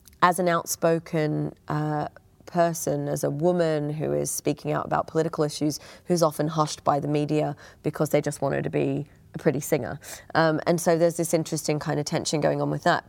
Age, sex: 30-49, female